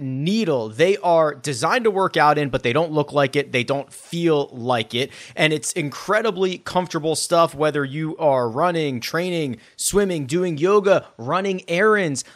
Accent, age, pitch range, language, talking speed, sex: American, 30-49, 140-180 Hz, English, 165 wpm, male